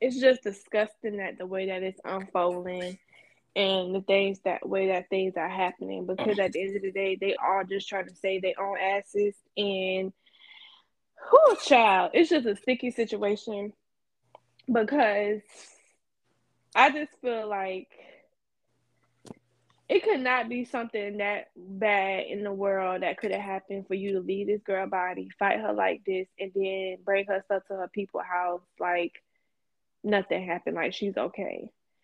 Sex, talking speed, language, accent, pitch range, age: female, 160 wpm, English, American, 190-220 Hz, 10-29